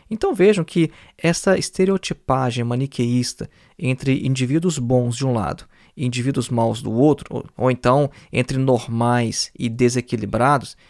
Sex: male